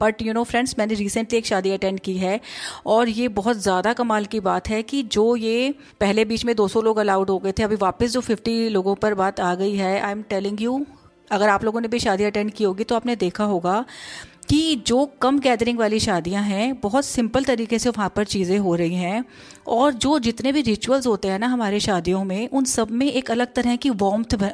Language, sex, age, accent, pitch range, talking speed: Hindi, female, 30-49, native, 200-245 Hz, 230 wpm